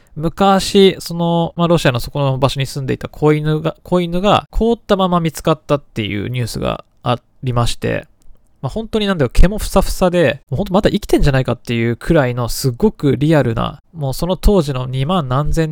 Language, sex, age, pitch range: Japanese, male, 20-39, 130-170 Hz